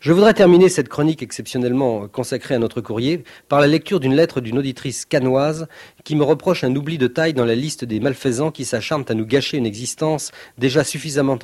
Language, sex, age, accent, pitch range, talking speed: French, male, 40-59, French, 125-165 Hz, 205 wpm